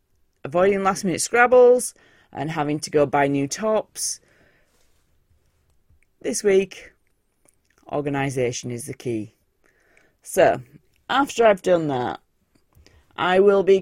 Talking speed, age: 105 wpm, 30-49